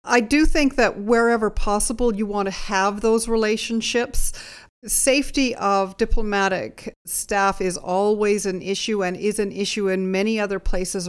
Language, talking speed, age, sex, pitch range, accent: English, 150 wpm, 50-69, female, 180-220 Hz, American